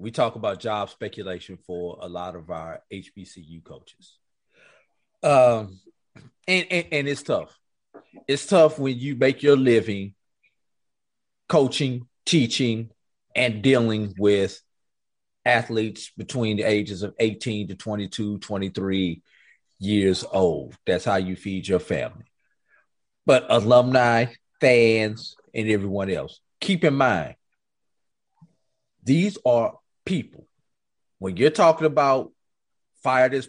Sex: male